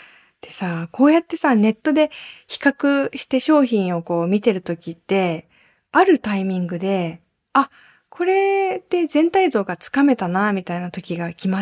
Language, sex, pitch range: Japanese, female, 175-265 Hz